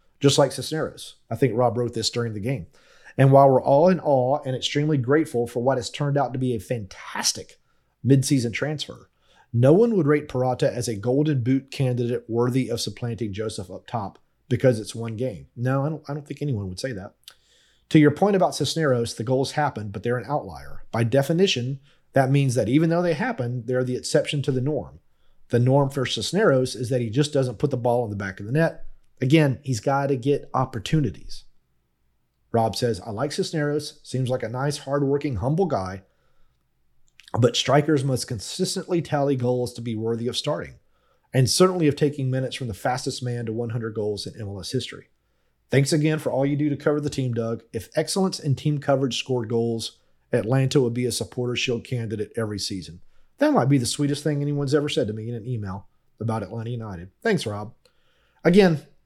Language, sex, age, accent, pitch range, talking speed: English, male, 30-49, American, 120-145 Hz, 200 wpm